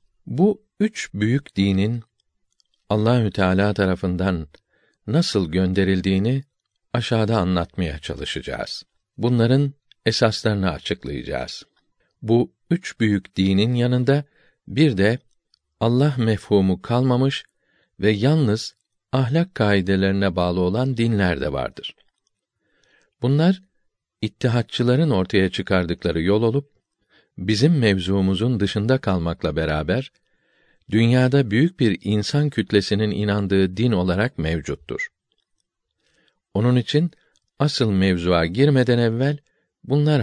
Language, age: Turkish, 50-69